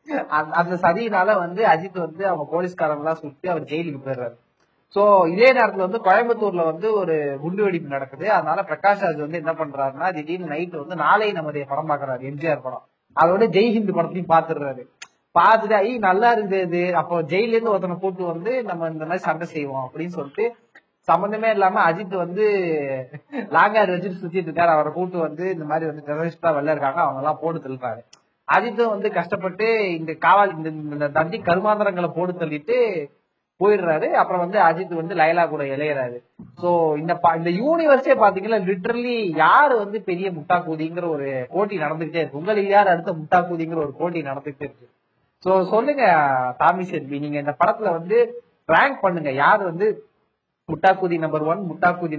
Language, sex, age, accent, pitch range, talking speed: Tamil, male, 30-49, native, 155-200 Hz, 150 wpm